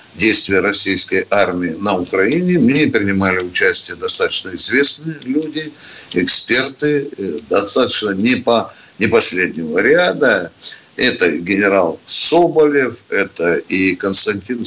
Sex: male